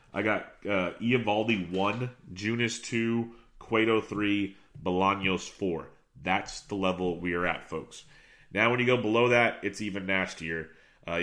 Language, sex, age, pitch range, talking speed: English, male, 30-49, 95-110 Hz, 150 wpm